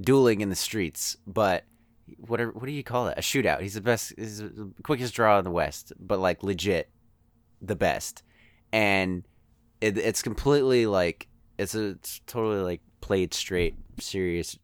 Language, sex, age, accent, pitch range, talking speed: English, male, 30-49, American, 90-115 Hz, 165 wpm